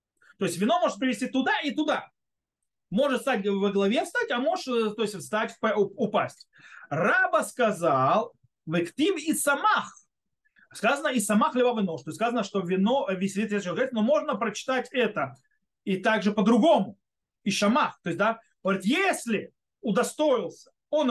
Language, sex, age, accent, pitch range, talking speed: Russian, male, 30-49, native, 195-265 Hz, 135 wpm